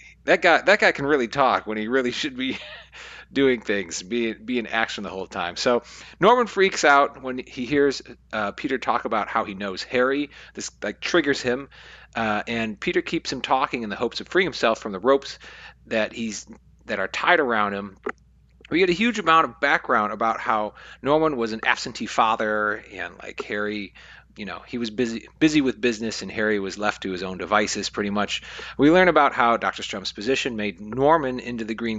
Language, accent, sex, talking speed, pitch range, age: English, American, male, 205 wpm, 105-150 Hz, 40-59